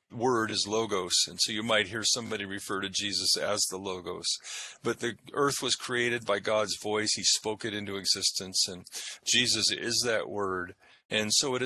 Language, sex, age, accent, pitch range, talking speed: English, male, 40-59, American, 100-120 Hz, 185 wpm